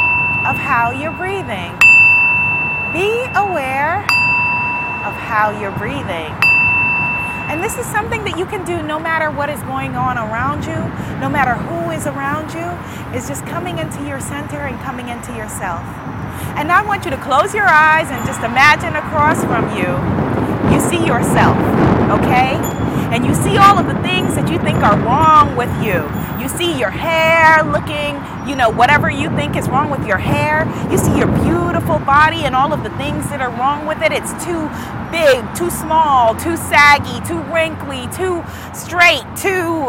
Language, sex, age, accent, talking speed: English, female, 30-49, American, 175 wpm